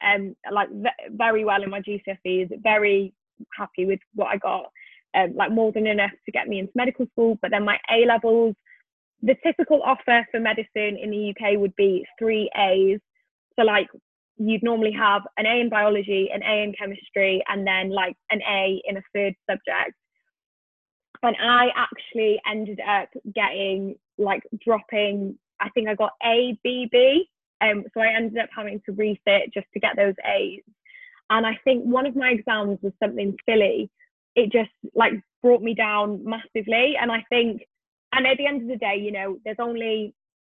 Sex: female